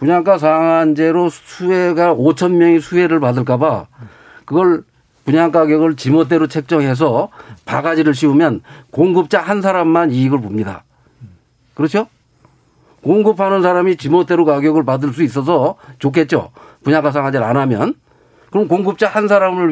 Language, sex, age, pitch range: Korean, male, 50-69, 145-175 Hz